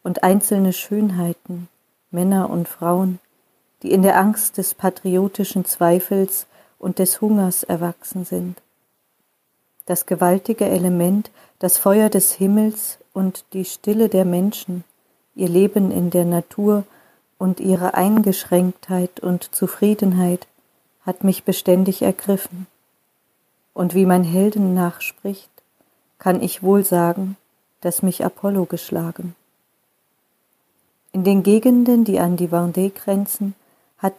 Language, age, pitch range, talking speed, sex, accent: German, 40-59, 180-200 Hz, 115 wpm, female, German